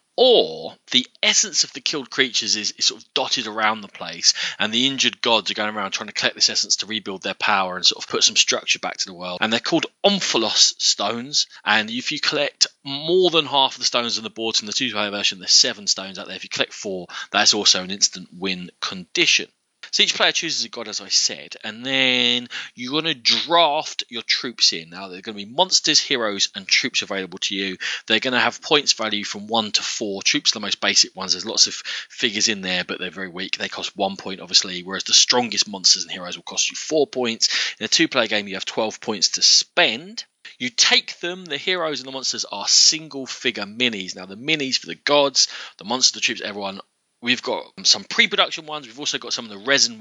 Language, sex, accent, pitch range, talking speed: English, male, British, 105-150 Hz, 235 wpm